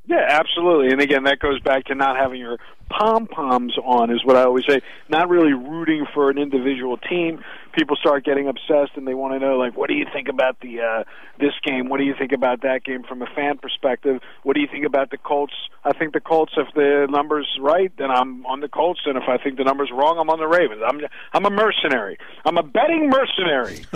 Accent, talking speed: American, 235 wpm